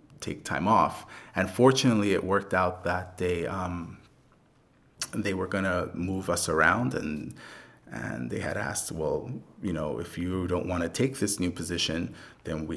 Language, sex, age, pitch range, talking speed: English, male, 30-49, 90-105 Hz, 170 wpm